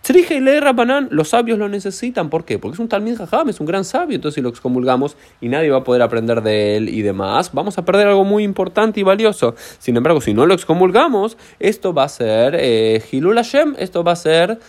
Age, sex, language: 20-39, male, Spanish